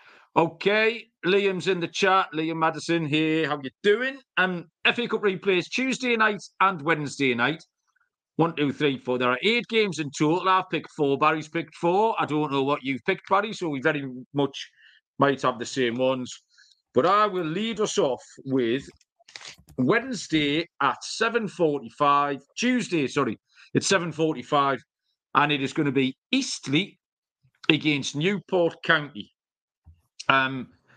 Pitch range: 135-180 Hz